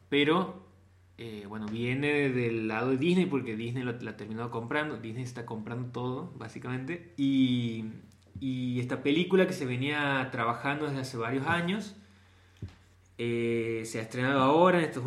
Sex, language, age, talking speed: male, Spanish, 20-39, 155 wpm